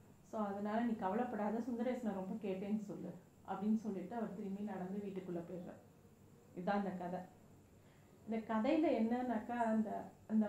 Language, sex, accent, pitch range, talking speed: Tamil, female, native, 205-245 Hz, 130 wpm